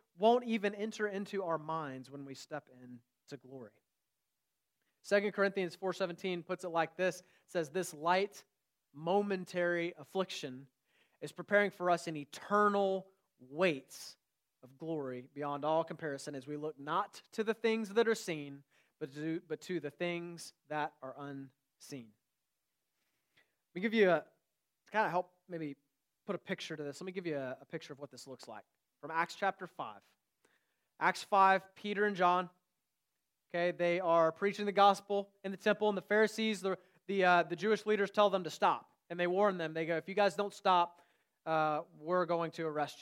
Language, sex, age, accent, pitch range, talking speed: English, male, 30-49, American, 155-195 Hz, 175 wpm